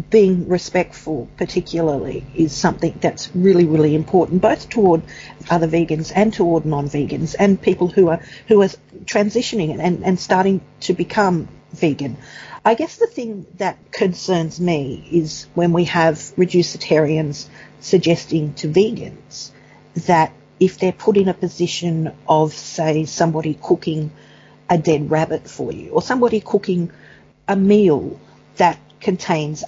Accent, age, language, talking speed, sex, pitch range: Australian, 50-69, English, 140 wpm, female, 155-185 Hz